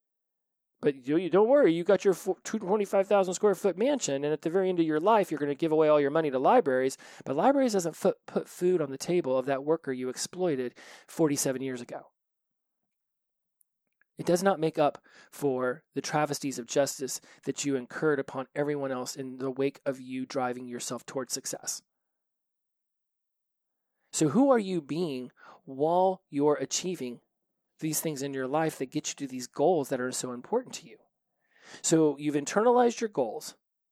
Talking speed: 175 wpm